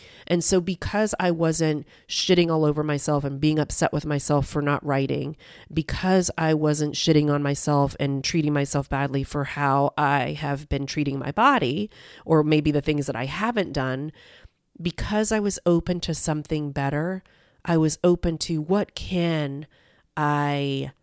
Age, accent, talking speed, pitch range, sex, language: 30-49, American, 165 wpm, 145-175 Hz, female, English